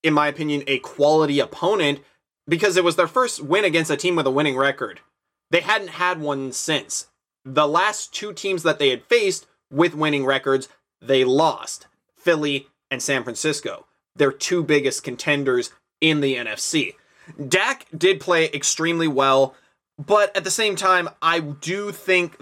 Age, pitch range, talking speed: 20-39, 140-180 Hz, 165 wpm